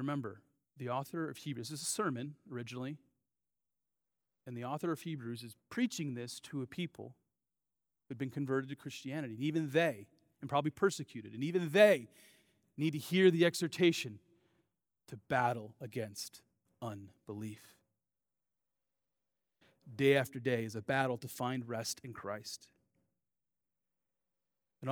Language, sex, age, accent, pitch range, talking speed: English, male, 40-59, American, 125-155 Hz, 130 wpm